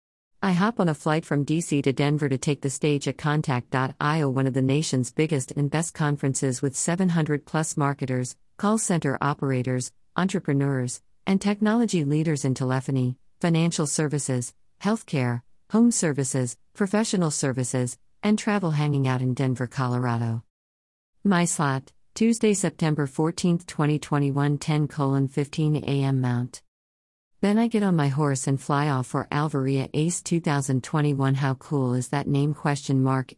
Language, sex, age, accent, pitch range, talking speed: English, female, 50-69, American, 130-160 Hz, 140 wpm